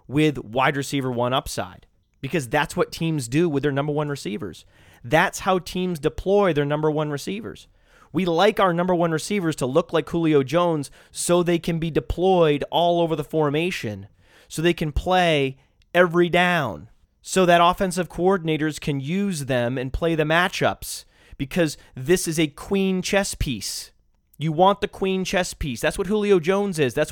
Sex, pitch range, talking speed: male, 150-185 Hz, 175 wpm